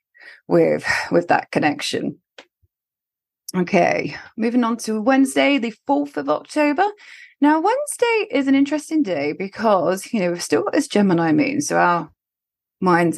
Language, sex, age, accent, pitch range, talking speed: English, female, 30-49, British, 170-255 Hz, 140 wpm